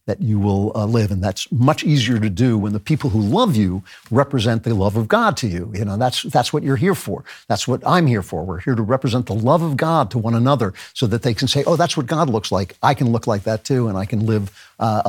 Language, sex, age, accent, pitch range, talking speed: English, male, 50-69, American, 110-140 Hz, 280 wpm